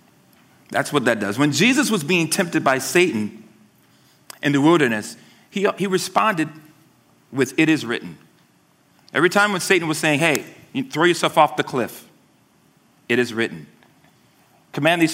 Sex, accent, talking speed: male, American, 150 wpm